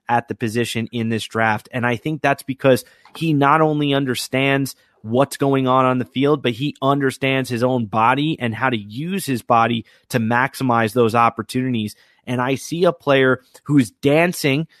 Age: 30-49